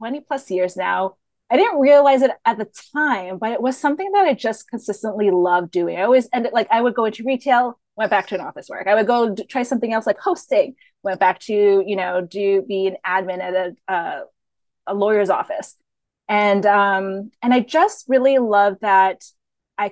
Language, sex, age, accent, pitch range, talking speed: English, female, 20-39, American, 190-245 Hz, 210 wpm